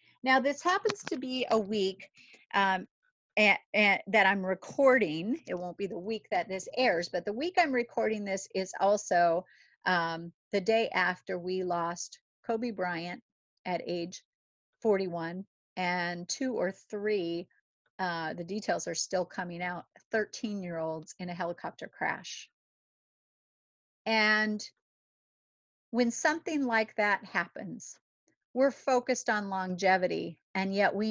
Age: 40-59